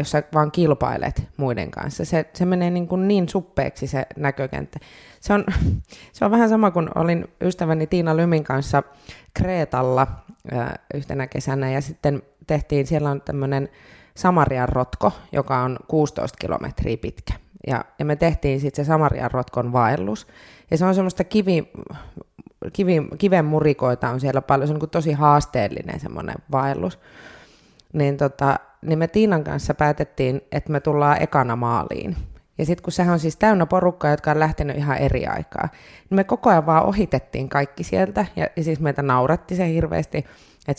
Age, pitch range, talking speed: 20-39, 135-170 Hz, 155 wpm